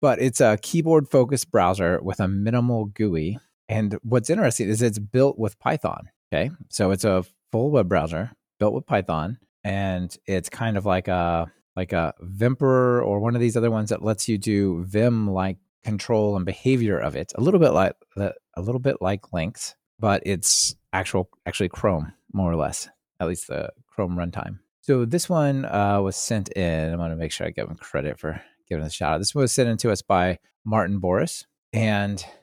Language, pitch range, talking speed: English, 95-120 Hz, 190 wpm